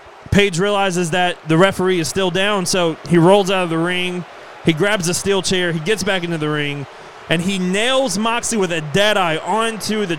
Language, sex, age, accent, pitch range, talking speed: English, male, 30-49, American, 160-205 Hz, 210 wpm